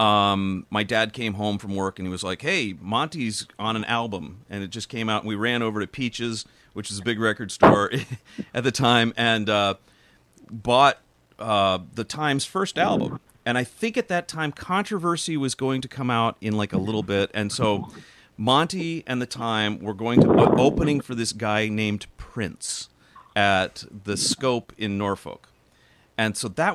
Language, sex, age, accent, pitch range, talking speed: English, male, 40-59, American, 100-120 Hz, 195 wpm